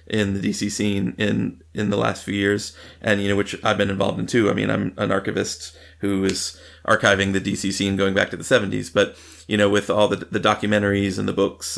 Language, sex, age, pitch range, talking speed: English, male, 30-49, 95-105 Hz, 235 wpm